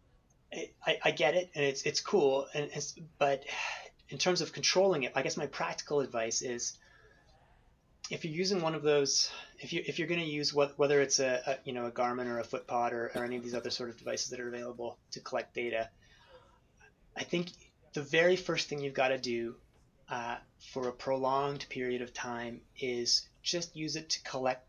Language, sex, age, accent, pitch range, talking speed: English, male, 30-49, American, 120-145 Hz, 200 wpm